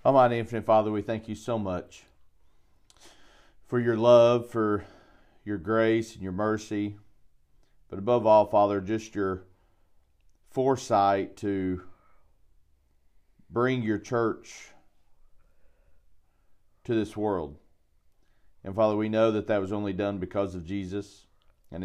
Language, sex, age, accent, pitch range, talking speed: English, male, 40-59, American, 90-110 Hz, 120 wpm